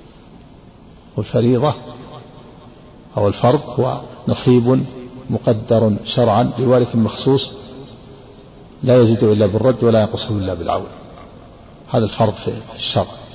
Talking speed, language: 95 wpm, Arabic